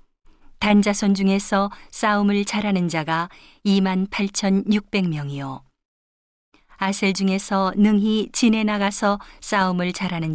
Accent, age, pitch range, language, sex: native, 40-59, 180-205 Hz, Korean, female